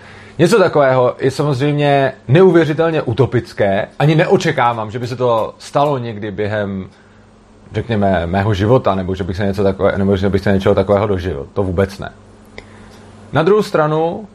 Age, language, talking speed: 30-49, Czech, 140 wpm